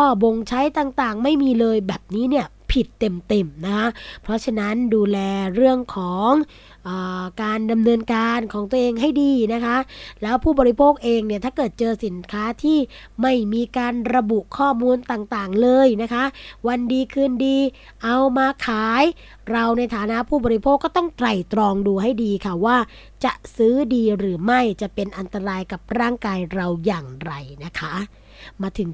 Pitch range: 210-255 Hz